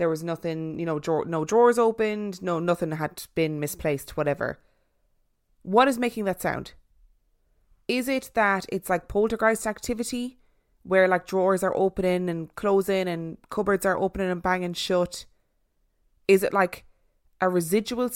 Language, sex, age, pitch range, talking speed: English, female, 20-39, 170-220 Hz, 150 wpm